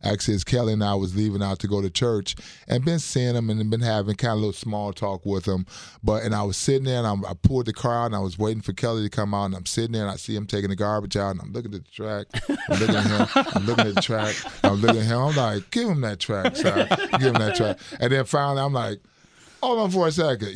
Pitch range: 100-115 Hz